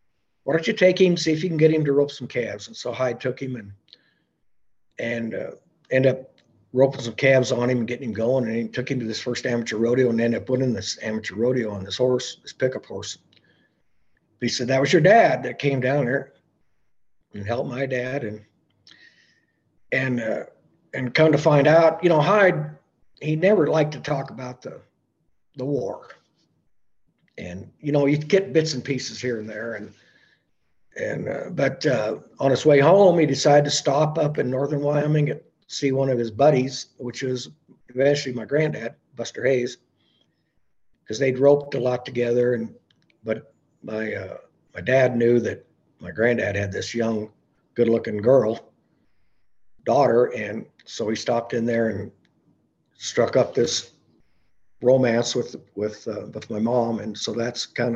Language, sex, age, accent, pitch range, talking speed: English, male, 50-69, American, 115-145 Hz, 180 wpm